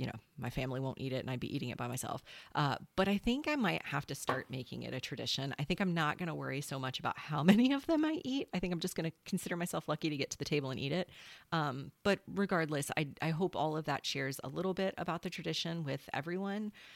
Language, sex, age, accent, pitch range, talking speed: English, female, 30-49, American, 140-185 Hz, 275 wpm